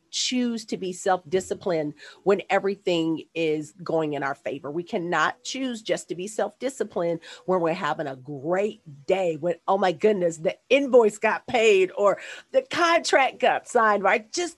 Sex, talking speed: female, 160 wpm